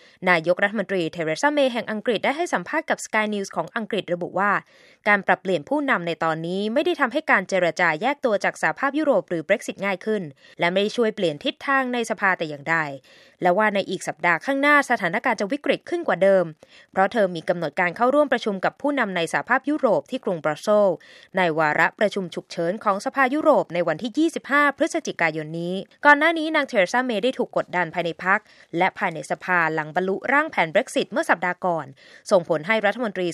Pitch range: 170-245 Hz